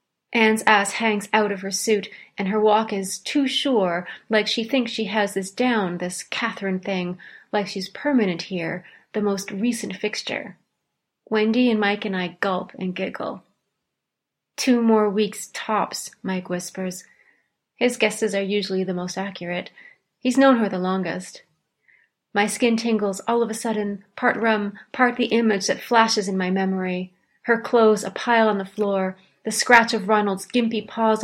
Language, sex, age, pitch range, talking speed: English, female, 30-49, 190-225 Hz, 165 wpm